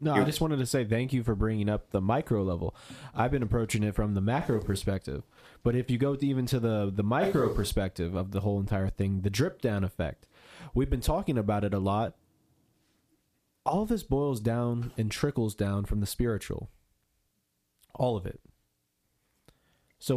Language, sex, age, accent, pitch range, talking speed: English, male, 20-39, American, 100-120 Hz, 185 wpm